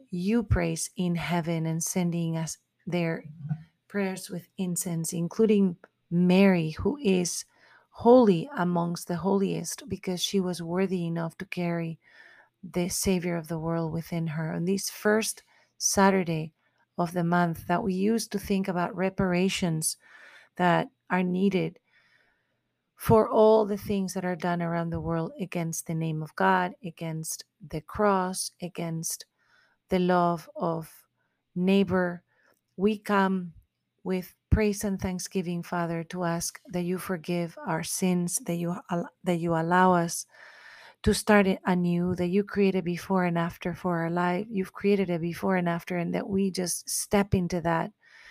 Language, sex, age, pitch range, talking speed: English, female, 40-59, 170-195 Hz, 150 wpm